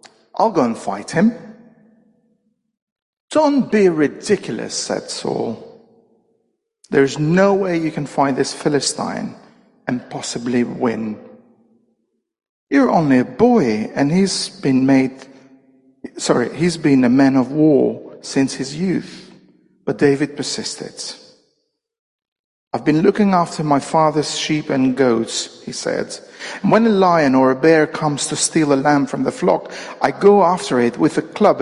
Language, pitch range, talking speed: English, 135-220 Hz, 140 wpm